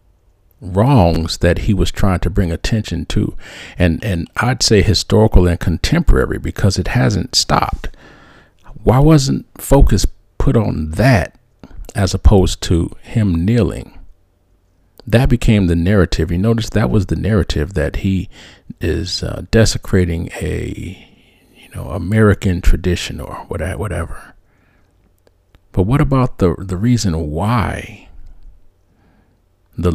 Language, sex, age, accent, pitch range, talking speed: English, male, 50-69, American, 85-105 Hz, 120 wpm